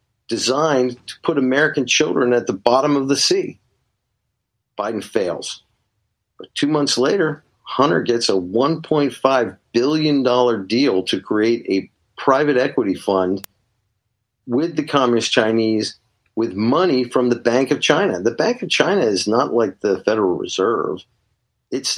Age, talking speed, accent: 50-69, 140 wpm, American